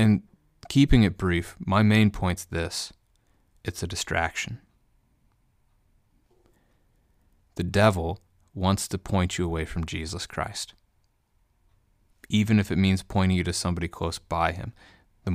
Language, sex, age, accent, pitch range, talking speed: English, male, 30-49, American, 90-105 Hz, 130 wpm